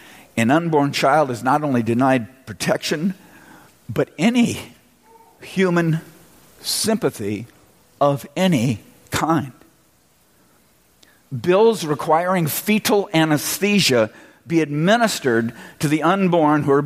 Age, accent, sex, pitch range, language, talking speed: 50-69, American, male, 125-165 Hz, English, 95 wpm